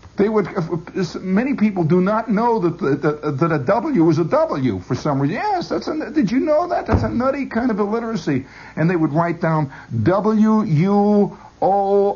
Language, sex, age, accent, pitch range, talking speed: English, male, 60-79, American, 150-200 Hz, 190 wpm